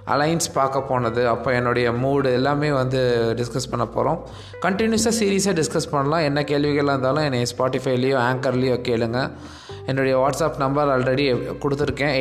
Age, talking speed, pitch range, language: 20-39, 135 wpm, 120-145 Hz, Tamil